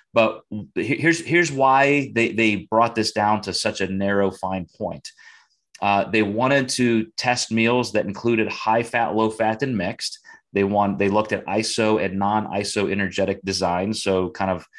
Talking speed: 175 wpm